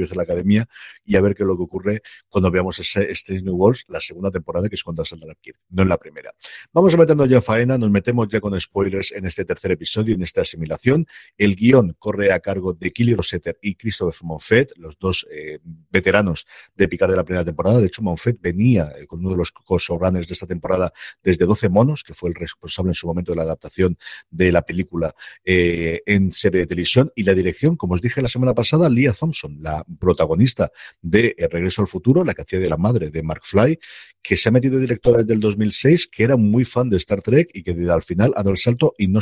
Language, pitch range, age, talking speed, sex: Spanish, 90-120 Hz, 50-69, 235 wpm, male